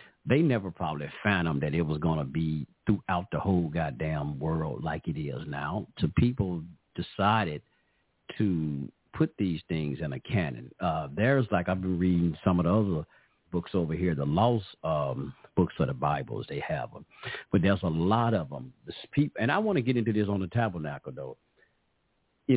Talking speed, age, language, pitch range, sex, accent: 190 wpm, 50-69, English, 80-110 Hz, male, American